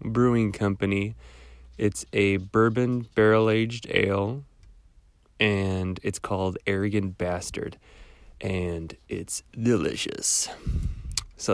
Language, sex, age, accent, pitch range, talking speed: English, male, 20-39, American, 95-110 Hz, 90 wpm